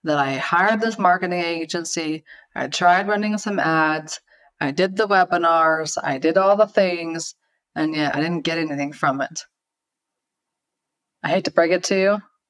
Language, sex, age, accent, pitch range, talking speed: English, female, 30-49, American, 165-205 Hz, 170 wpm